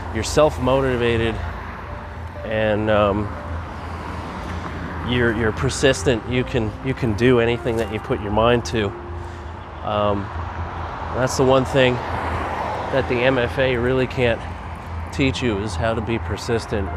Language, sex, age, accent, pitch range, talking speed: English, male, 30-49, American, 85-110 Hz, 125 wpm